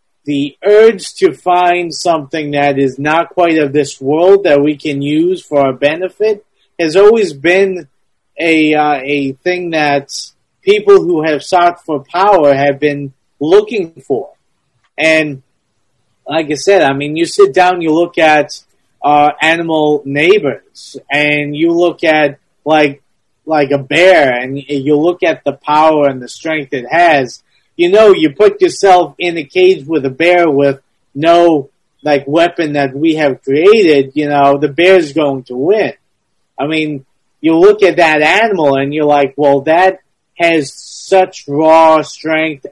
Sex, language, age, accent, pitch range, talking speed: male, English, 30-49, American, 140-175 Hz, 160 wpm